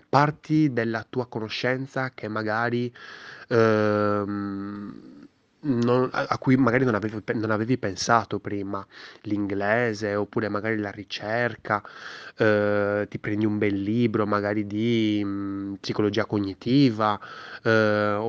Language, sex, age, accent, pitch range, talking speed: Italian, male, 20-39, native, 100-125 Hz, 120 wpm